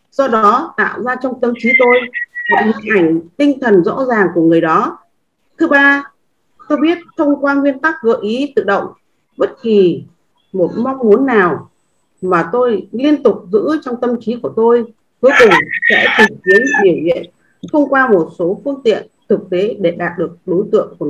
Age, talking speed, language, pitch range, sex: 30-49, 190 wpm, Vietnamese, 200-290 Hz, female